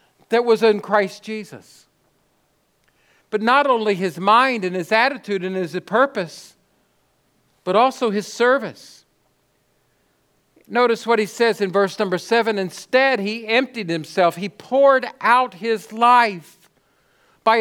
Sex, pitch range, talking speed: male, 205-230 Hz, 130 wpm